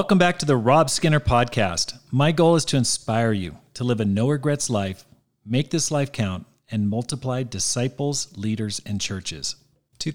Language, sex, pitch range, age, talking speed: English, male, 115-135 Hz, 40-59, 175 wpm